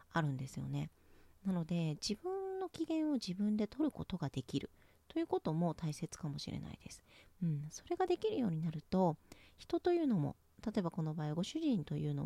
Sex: female